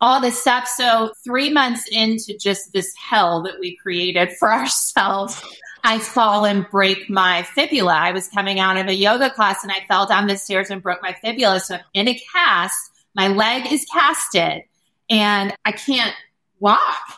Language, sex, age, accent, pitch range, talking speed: English, female, 30-49, American, 190-230 Hz, 180 wpm